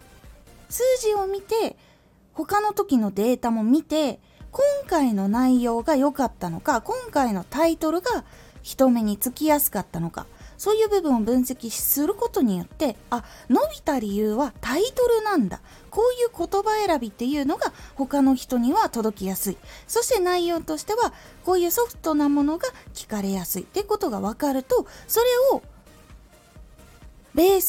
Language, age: Japanese, 20-39